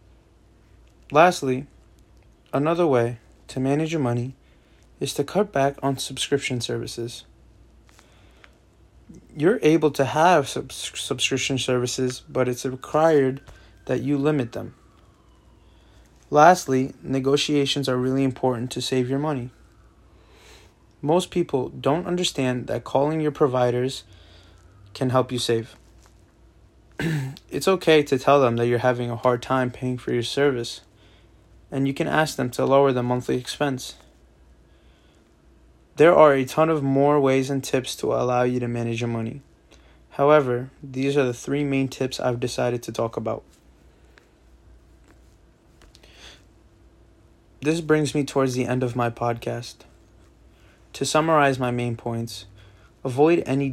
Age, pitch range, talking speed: 20-39, 115-140 Hz, 130 wpm